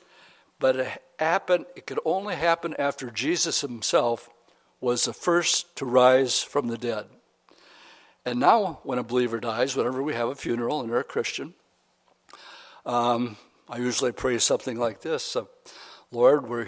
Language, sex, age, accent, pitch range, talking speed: English, male, 60-79, American, 120-165 Hz, 150 wpm